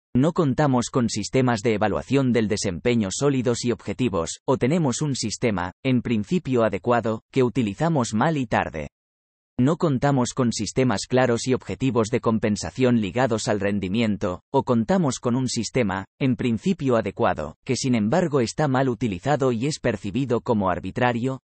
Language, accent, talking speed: Spanish, Spanish, 150 wpm